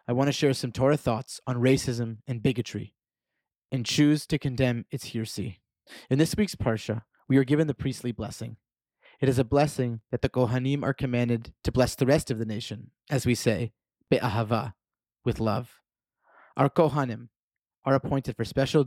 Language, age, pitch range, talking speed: English, 30-49, 115-135 Hz, 175 wpm